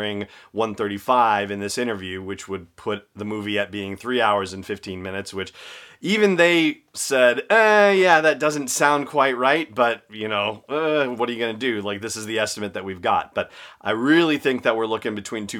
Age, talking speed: 30-49, 210 wpm